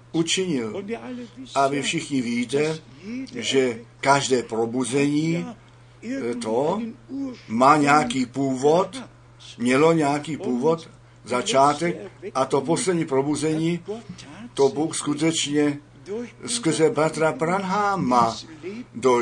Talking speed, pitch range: 80 wpm, 125-160 Hz